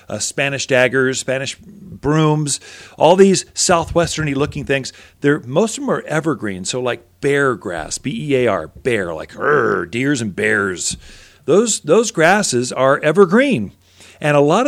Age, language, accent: 40-59, English, American